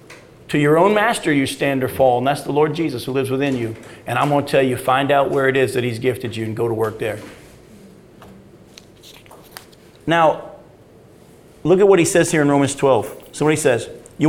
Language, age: English, 40-59